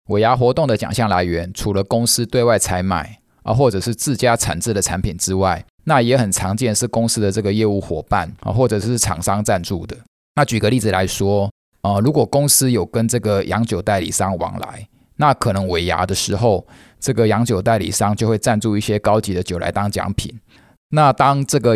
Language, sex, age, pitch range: Chinese, male, 20-39, 95-120 Hz